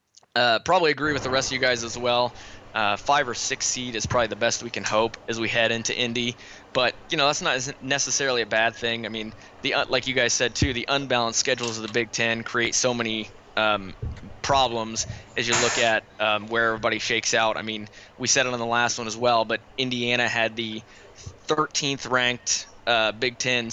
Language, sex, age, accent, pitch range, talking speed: English, male, 20-39, American, 110-130 Hz, 220 wpm